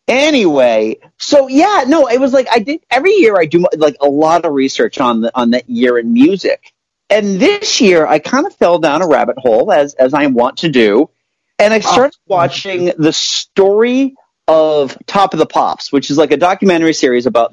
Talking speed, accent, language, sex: 205 wpm, American, English, male